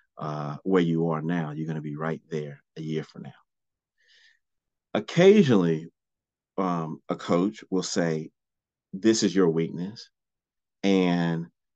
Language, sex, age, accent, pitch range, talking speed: English, male, 40-59, American, 75-95 Hz, 135 wpm